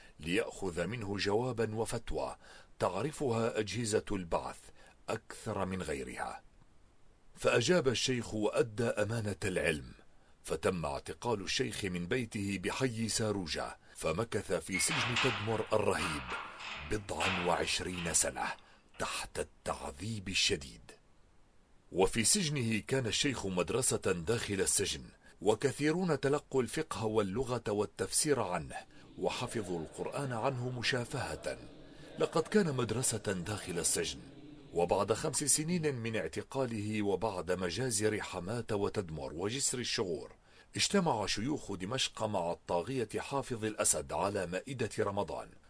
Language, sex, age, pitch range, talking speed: Arabic, male, 40-59, 105-135 Hz, 100 wpm